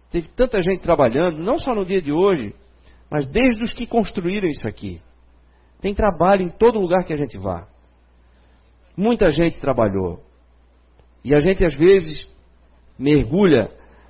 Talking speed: 150 wpm